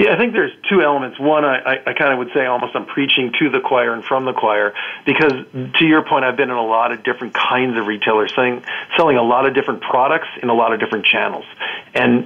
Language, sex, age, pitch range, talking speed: English, male, 50-69, 120-145 Hz, 245 wpm